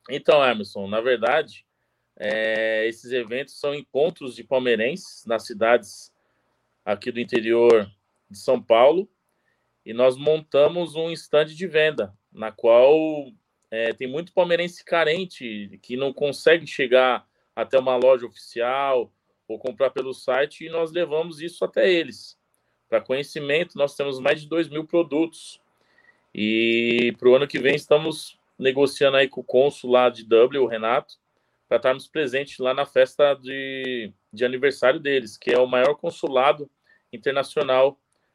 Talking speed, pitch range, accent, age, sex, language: 140 wpm, 115-150 Hz, Brazilian, 20-39, male, Portuguese